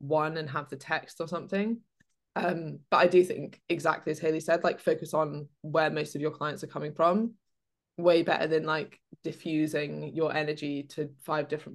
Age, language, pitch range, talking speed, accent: 20-39, English, 140-165 Hz, 190 wpm, British